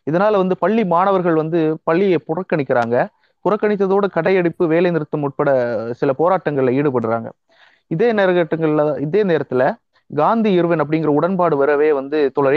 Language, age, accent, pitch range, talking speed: Tamil, 30-49, native, 145-190 Hz, 125 wpm